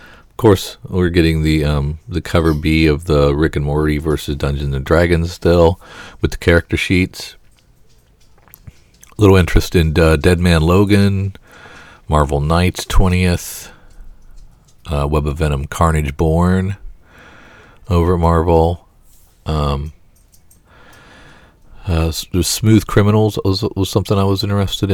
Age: 40-59